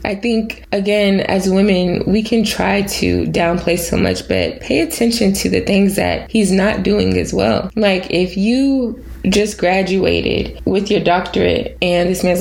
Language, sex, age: English, female, 20-39